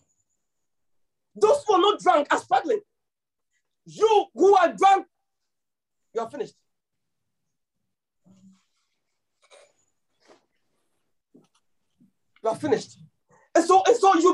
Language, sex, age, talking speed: English, male, 40-59, 90 wpm